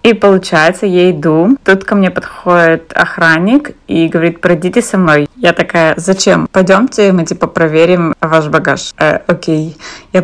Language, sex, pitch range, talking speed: Russian, female, 165-190 Hz, 150 wpm